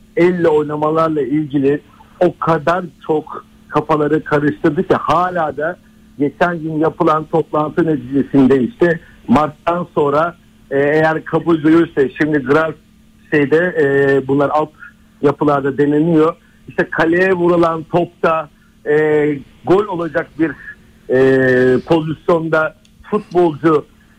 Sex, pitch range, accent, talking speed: male, 150-180 Hz, native, 100 wpm